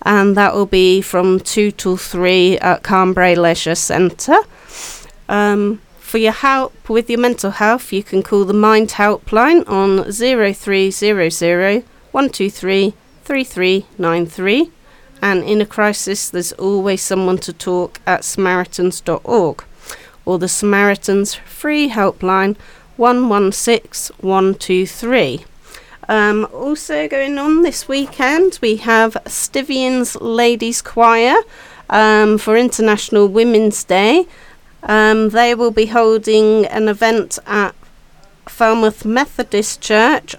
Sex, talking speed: female, 110 wpm